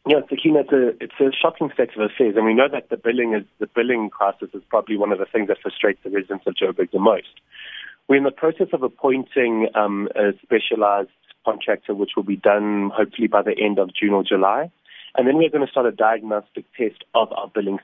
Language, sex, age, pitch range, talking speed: English, male, 20-39, 105-130 Hz, 225 wpm